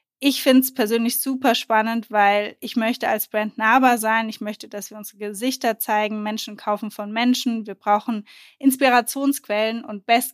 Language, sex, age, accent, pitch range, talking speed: German, female, 20-39, German, 210-240 Hz, 170 wpm